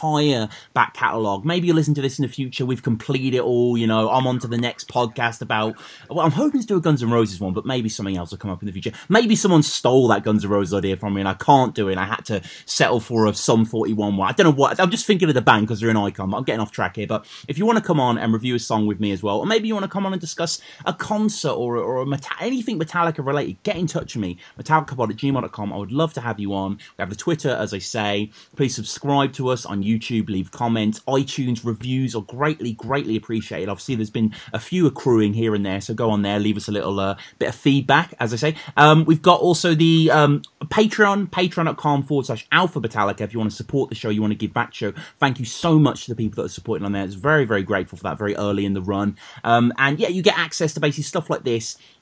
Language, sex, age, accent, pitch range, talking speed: English, male, 30-49, British, 105-150 Hz, 280 wpm